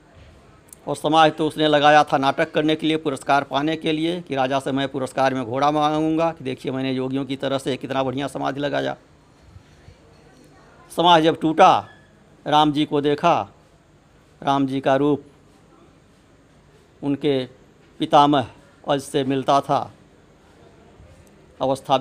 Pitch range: 130-160 Hz